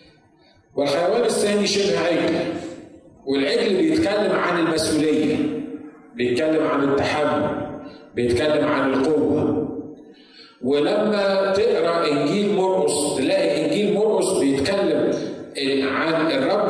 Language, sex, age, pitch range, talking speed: Arabic, male, 50-69, 140-175 Hz, 85 wpm